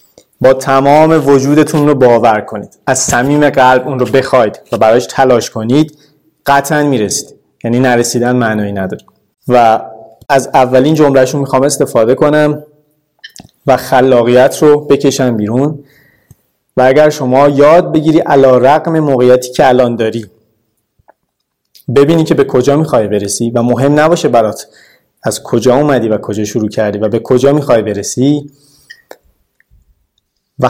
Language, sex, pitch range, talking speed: Persian, male, 120-150 Hz, 135 wpm